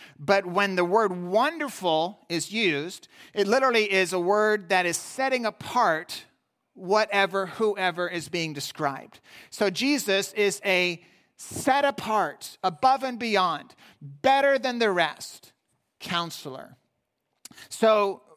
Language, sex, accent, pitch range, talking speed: English, male, American, 170-220 Hz, 120 wpm